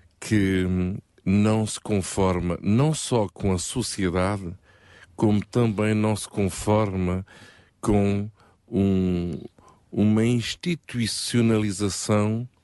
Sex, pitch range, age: male, 90-105 Hz, 50-69